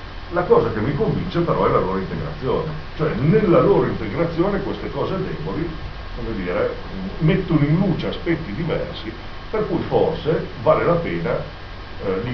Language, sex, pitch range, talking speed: Italian, male, 90-105 Hz, 155 wpm